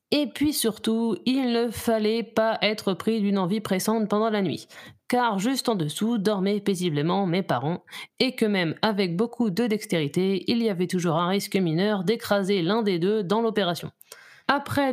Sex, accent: female, French